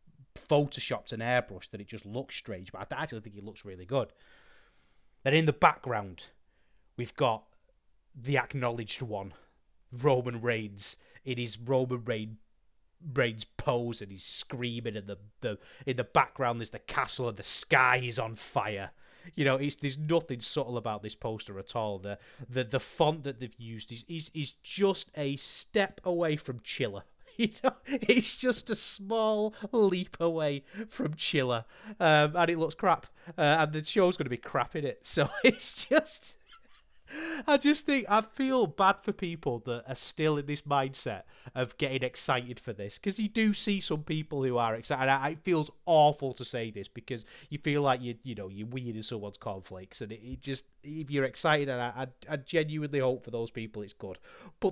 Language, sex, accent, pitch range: English, male, British, 115-160 Hz